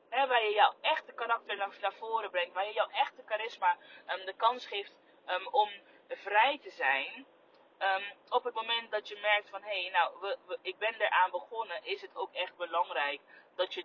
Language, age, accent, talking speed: Dutch, 20-39, Dutch, 200 wpm